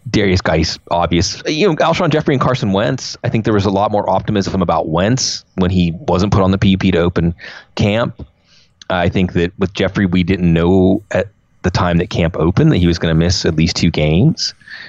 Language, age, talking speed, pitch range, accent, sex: English, 30-49, 220 wpm, 85-100 Hz, American, male